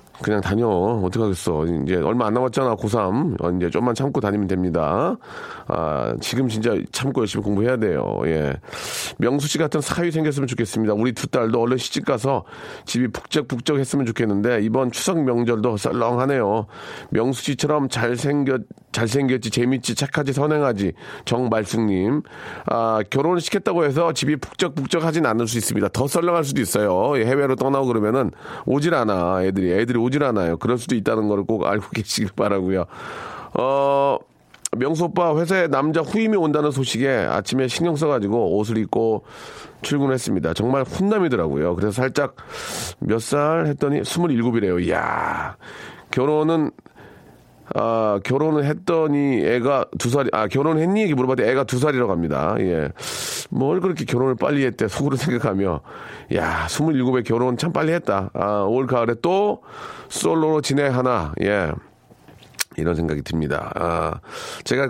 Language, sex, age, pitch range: Korean, male, 40-59, 105-145 Hz